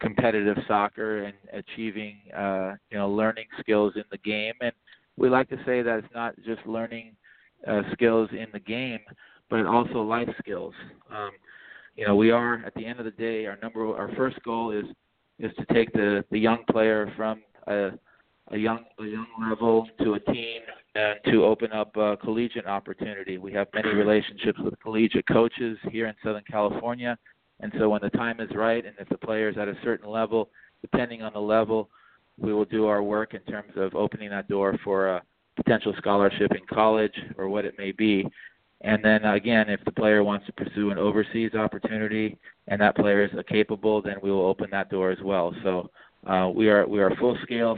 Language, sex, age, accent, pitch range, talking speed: English, male, 40-59, American, 100-115 Hz, 200 wpm